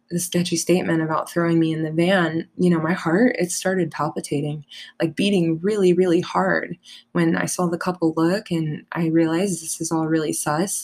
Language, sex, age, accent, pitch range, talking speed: English, female, 20-39, American, 160-175 Hz, 195 wpm